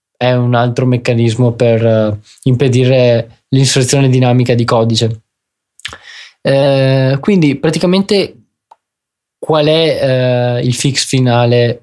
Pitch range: 120-155 Hz